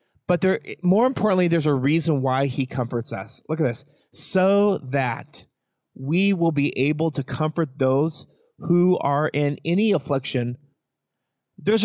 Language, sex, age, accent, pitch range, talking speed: English, male, 30-49, American, 135-175 Hz, 140 wpm